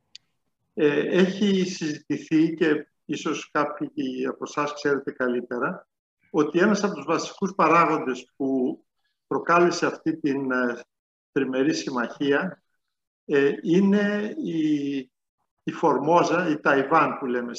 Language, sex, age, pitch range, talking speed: Greek, male, 60-79, 140-185 Hz, 105 wpm